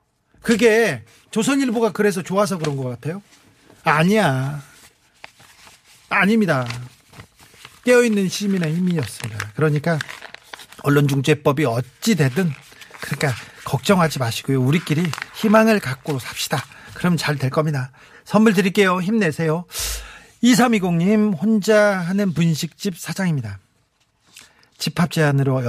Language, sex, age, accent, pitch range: Korean, male, 40-59, native, 135-195 Hz